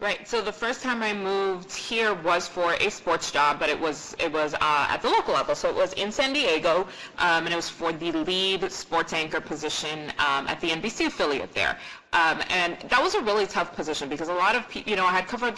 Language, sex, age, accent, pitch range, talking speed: English, female, 30-49, American, 170-215 Hz, 245 wpm